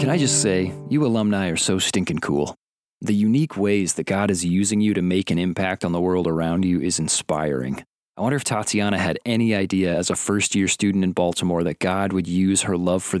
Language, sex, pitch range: English, male, 90-115 Hz